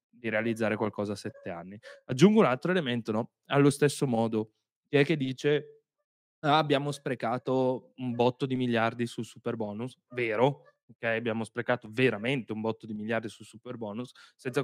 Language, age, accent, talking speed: Italian, 20-39, native, 170 wpm